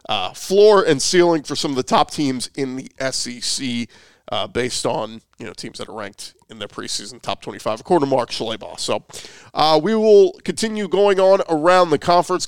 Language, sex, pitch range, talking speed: English, male, 140-170 Hz, 195 wpm